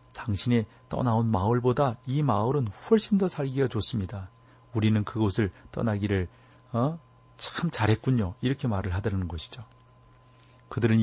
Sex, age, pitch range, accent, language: male, 40-59, 105-130 Hz, native, Korean